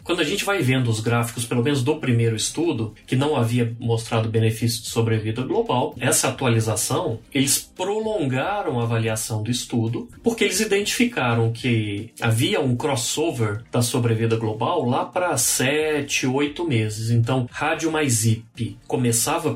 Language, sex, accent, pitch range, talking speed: Portuguese, male, Brazilian, 115-155 Hz, 145 wpm